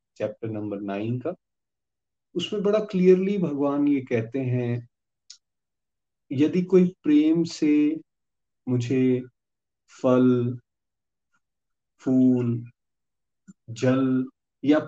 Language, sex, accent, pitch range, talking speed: Hindi, male, native, 110-150 Hz, 80 wpm